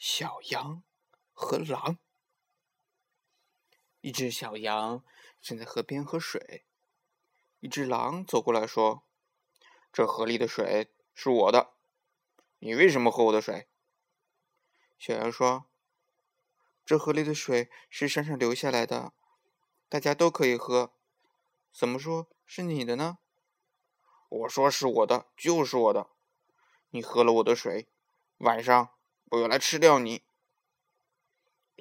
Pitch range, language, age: 120-165 Hz, Chinese, 20-39